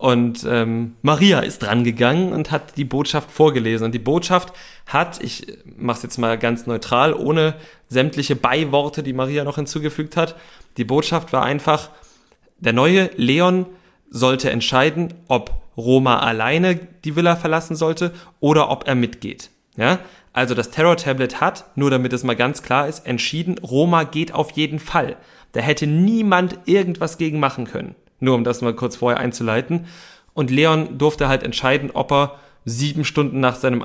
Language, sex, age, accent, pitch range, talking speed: German, male, 30-49, German, 125-160 Hz, 165 wpm